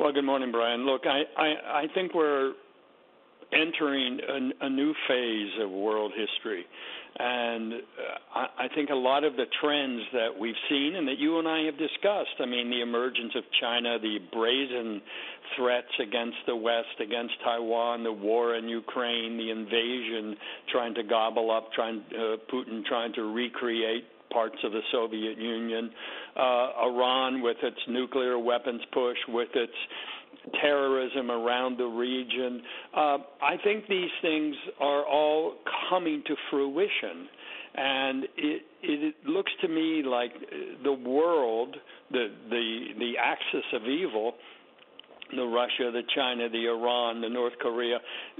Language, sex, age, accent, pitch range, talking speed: English, male, 60-79, American, 115-150 Hz, 150 wpm